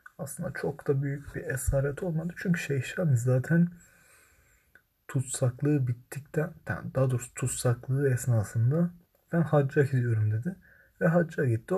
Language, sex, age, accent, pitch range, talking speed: Turkish, male, 30-49, native, 120-145 Hz, 120 wpm